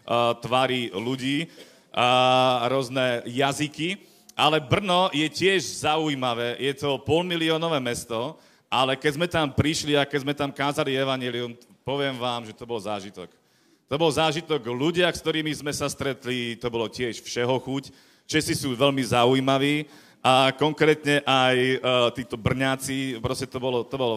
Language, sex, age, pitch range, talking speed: Slovak, male, 40-59, 125-150 Hz, 150 wpm